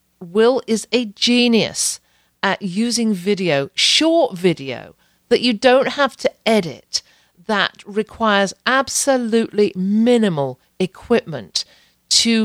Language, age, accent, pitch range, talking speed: English, 40-59, British, 165-230 Hz, 100 wpm